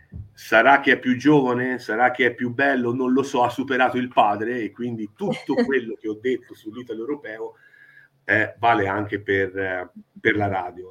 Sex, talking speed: male, 185 wpm